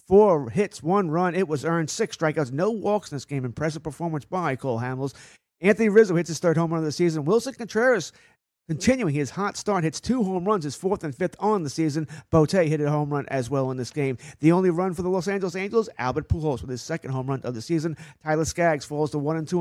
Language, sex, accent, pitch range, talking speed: English, male, American, 140-180 Hz, 250 wpm